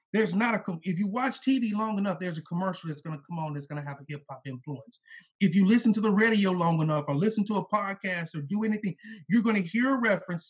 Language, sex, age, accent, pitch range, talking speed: English, male, 30-49, American, 180-230 Hz, 270 wpm